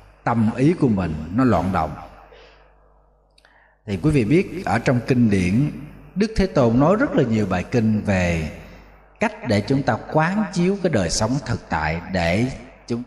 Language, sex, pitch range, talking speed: Vietnamese, male, 105-150 Hz, 175 wpm